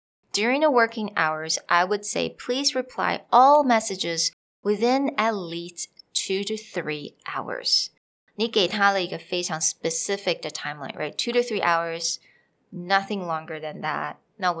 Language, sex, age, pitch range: Chinese, female, 20-39, 170-225 Hz